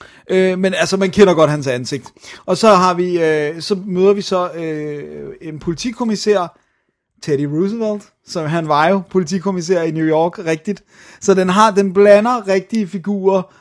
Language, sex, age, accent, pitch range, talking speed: Danish, male, 30-49, native, 150-180 Hz, 170 wpm